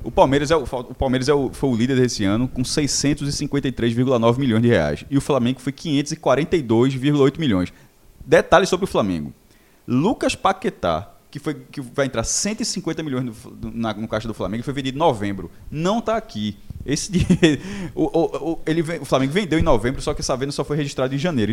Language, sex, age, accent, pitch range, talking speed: Portuguese, male, 20-39, Brazilian, 120-170 Hz, 195 wpm